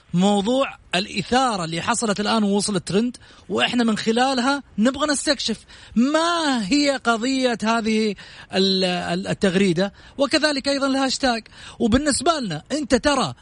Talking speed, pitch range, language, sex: 105 wpm, 200-270 Hz, Arabic, male